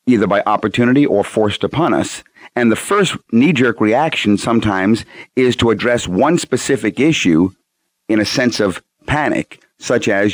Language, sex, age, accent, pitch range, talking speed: English, male, 40-59, American, 100-130 Hz, 150 wpm